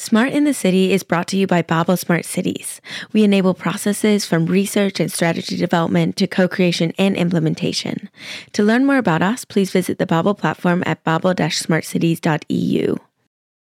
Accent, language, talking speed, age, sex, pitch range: American, English, 155 wpm, 20-39, female, 175-225 Hz